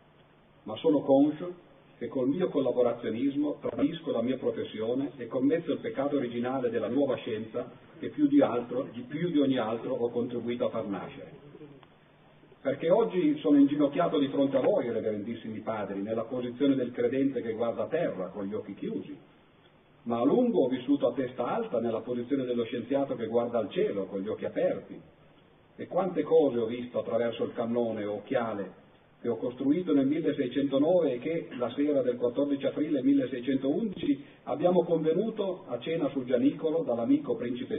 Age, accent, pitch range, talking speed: 40-59, native, 120-165 Hz, 170 wpm